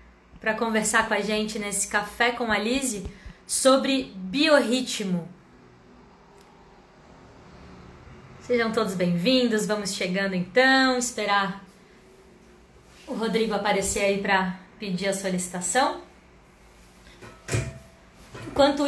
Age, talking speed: 20-39, 90 wpm